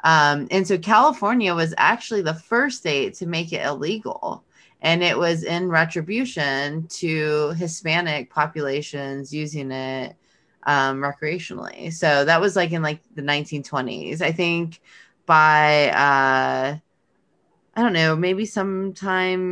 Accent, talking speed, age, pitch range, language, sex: American, 130 wpm, 20-39, 140-180 Hz, English, female